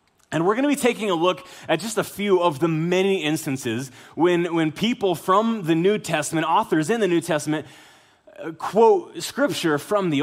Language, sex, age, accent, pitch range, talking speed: English, male, 20-39, American, 135-195 Hz, 190 wpm